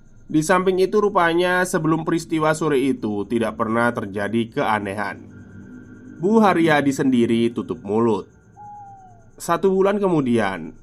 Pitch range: 110-155 Hz